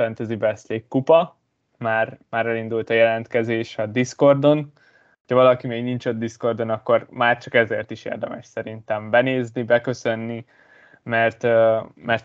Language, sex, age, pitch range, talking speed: Hungarian, male, 20-39, 115-130 Hz, 130 wpm